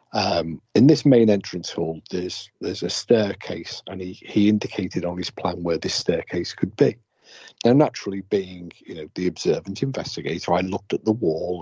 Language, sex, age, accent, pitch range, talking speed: English, male, 50-69, British, 95-115 Hz, 180 wpm